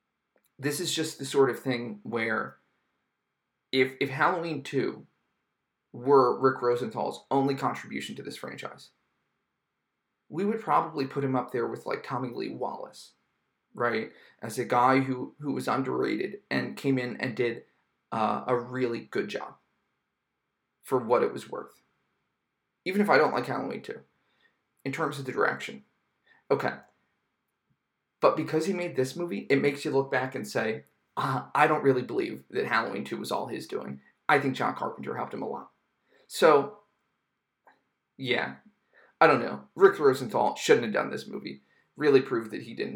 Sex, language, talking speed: male, English, 165 wpm